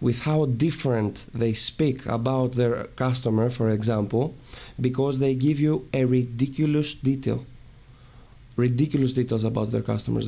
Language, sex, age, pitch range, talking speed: English, male, 20-39, 115-130 Hz, 130 wpm